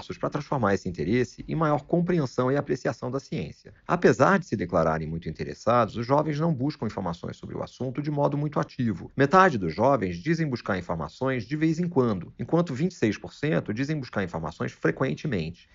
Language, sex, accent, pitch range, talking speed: Portuguese, male, Brazilian, 100-155 Hz, 170 wpm